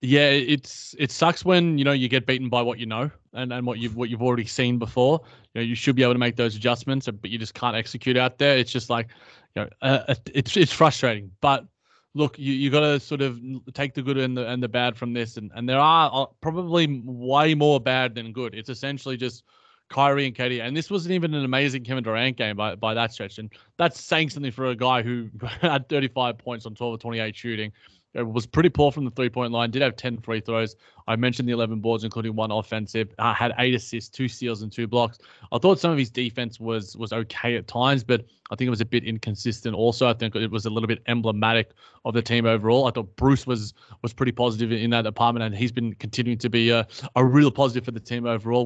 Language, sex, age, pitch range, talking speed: English, male, 20-39, 115-130 Hz, 245 wpm